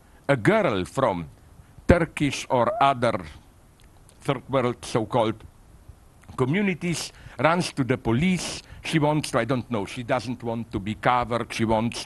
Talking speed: 140 wpm